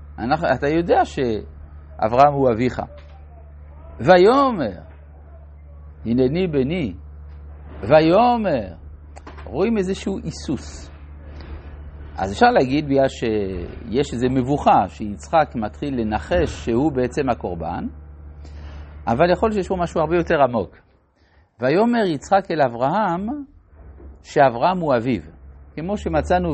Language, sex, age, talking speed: Hebrew, male, 60-79, 95 wpm